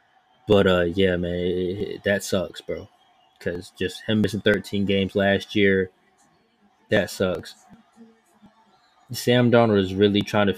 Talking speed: 140 wpm